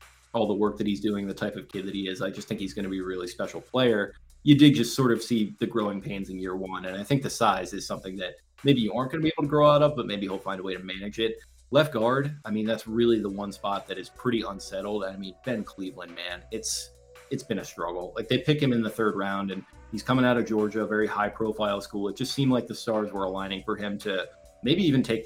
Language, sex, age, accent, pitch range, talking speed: English, male, 20-39, American, 95-120 Hz, 285 wpm